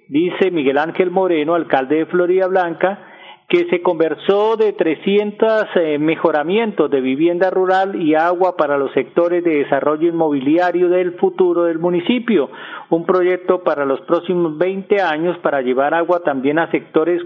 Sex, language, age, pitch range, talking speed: male, Spanish, 40-59, 155-195 Hz, 145 wpm